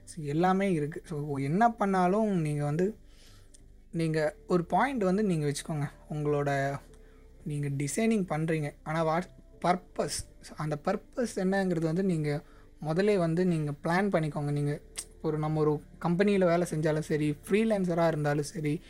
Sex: male